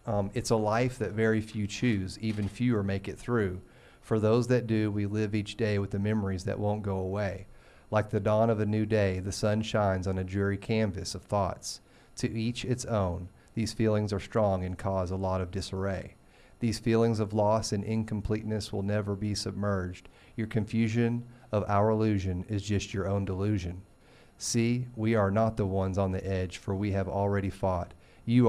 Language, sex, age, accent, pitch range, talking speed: English, male, 40-59, American, 95-110 Hz, 195 wpm